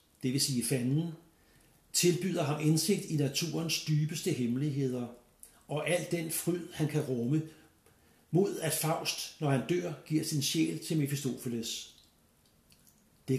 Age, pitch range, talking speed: 60-79, 125-155 Hz, 135 wpm